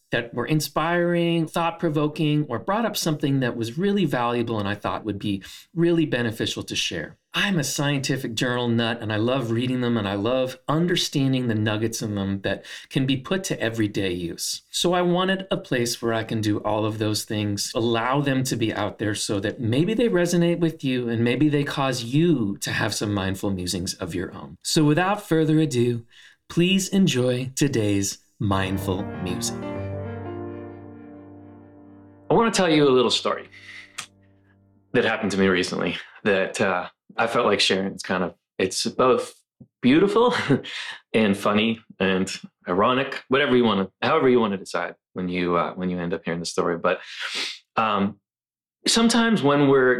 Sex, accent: male, American